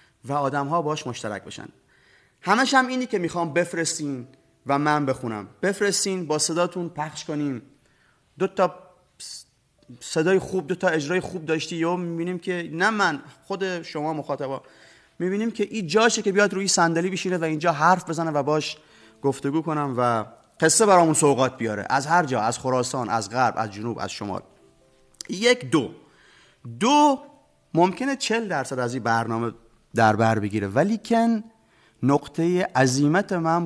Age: 30-49